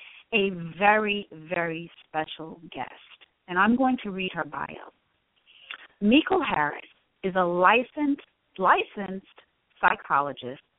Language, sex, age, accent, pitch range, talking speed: English, female, 40-59, American, 165-235 Hz, 105 wpm